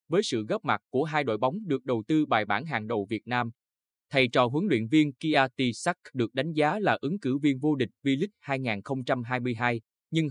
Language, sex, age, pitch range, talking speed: Vietnamese, male, 20-39, 115-155 Hz, 210 wpm